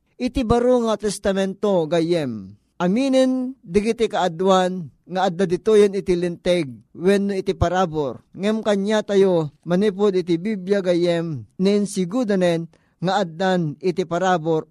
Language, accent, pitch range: Filipino, native, 175-210 Hz